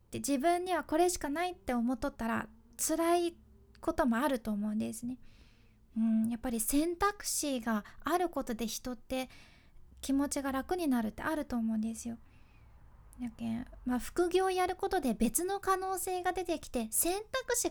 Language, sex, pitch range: Japanese, female, 225-315 Hz